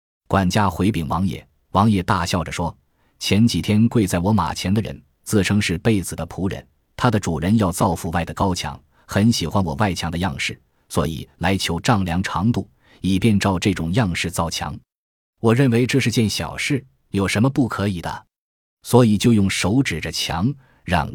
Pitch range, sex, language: 85-115 Hz, male, Chinese